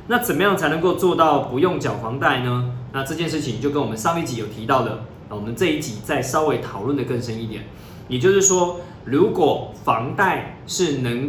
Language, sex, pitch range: Chinese, male, 115-155 Hz